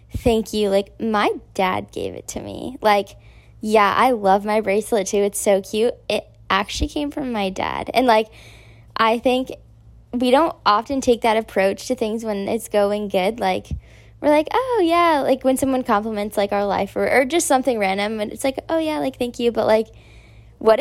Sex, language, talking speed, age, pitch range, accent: female, English, 200 wpm, 10-29, 195-255 Hz, American